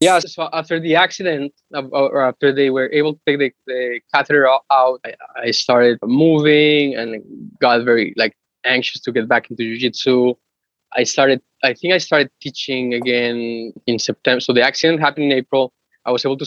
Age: 20-39